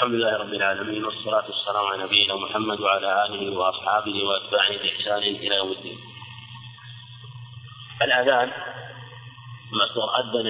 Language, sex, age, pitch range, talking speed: Arabic, male, 30-49, 115-125 Hz, 115 wpm